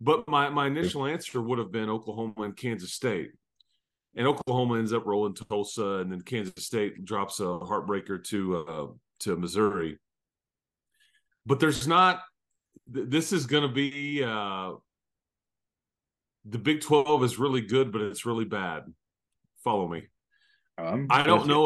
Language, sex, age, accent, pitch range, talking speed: English, male, 30-49, American, 95-130 Hz, 140 wpm